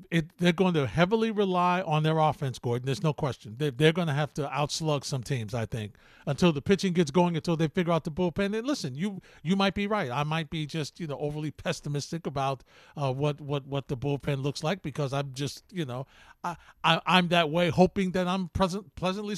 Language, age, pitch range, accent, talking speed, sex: English, 50-69, 150-195 Hz, American, 230 wpm, male